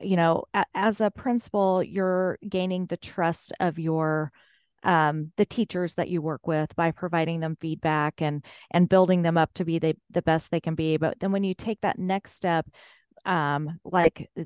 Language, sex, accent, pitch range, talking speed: English, female, American, 165-200 Hz, 185 wpm